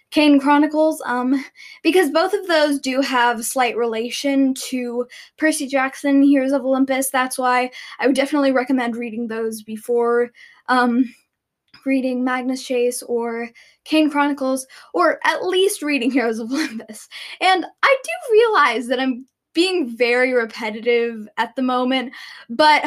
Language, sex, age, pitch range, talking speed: English, female, 10-29, 240-285 Hz, 140 wpm